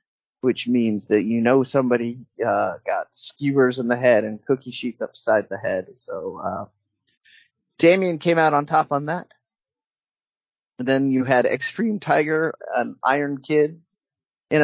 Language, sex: English, male